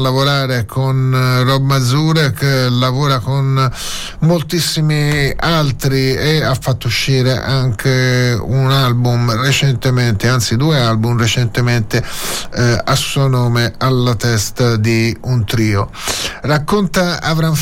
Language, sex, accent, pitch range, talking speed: Italian, male, native, 125-150 Hz, 105 wpm